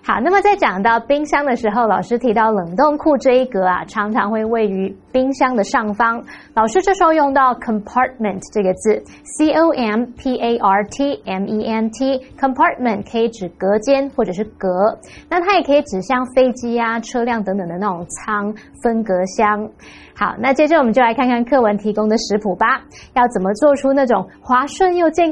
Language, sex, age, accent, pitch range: Chinese, female, 20-39, American, 210-275 Hz